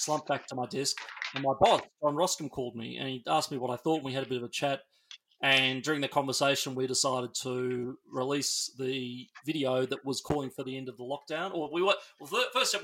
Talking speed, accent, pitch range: 235 wpm, Australian, 130-150 Hz